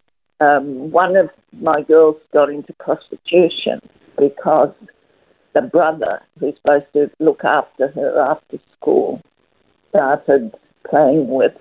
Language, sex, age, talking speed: English, female, 50-69, 115 wpm